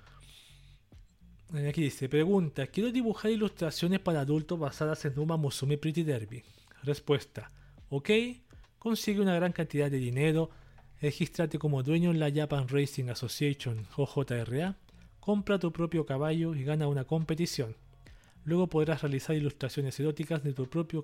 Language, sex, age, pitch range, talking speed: Spanish, male, 40-59, 130-165 Hz, 135 wpm